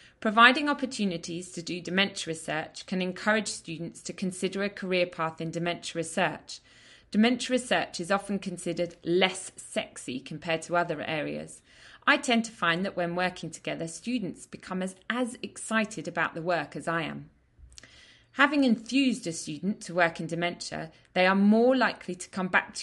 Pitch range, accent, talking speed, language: 170-205 Hz, British, 165 wpm, English